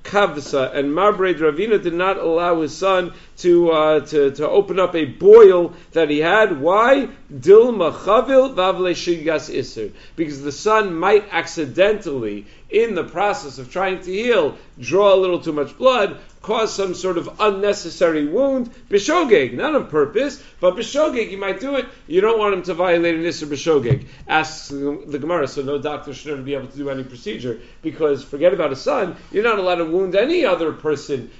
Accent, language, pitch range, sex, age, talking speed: American, English, 150-205 Hz, male, 50-69, 170 wpm